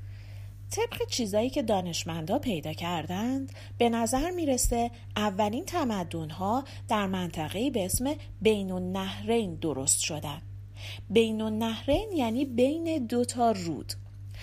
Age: 30-49